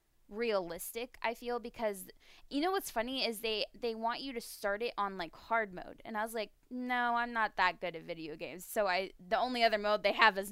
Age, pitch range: 10-29, 195-230 Hz